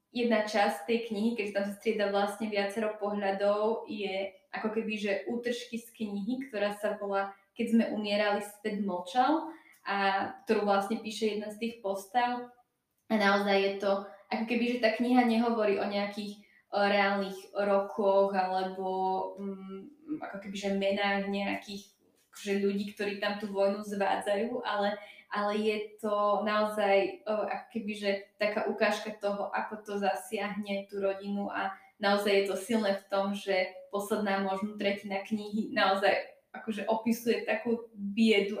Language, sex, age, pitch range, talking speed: Slovak, female, 20-39, 200-220 Hz, 145 wpm